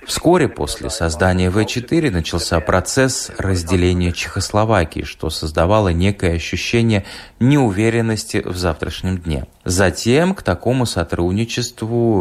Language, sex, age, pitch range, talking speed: Russian, male, 30-49, 85-110 Hz, 100 wpm